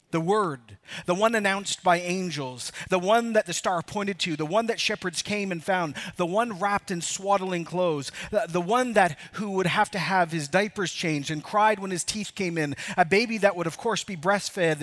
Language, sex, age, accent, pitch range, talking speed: English, male, 40-59, American, 155-195 Hz, 220 wpm